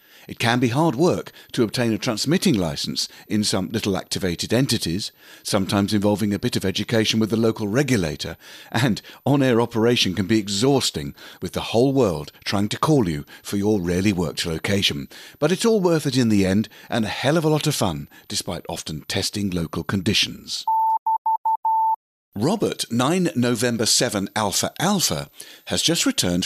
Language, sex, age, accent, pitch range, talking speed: English, male, 50-69, British, 100-140 Hz, 165 wpm